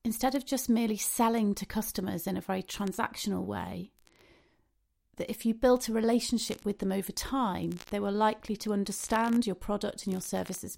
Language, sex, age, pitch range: English, female, 40-59, 200-235 Hz